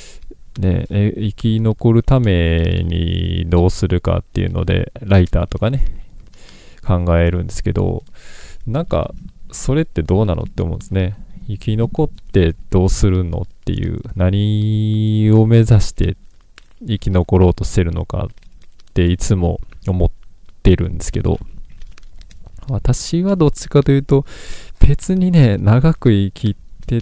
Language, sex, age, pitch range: Japanese, male, 20-39, 90-110 Hz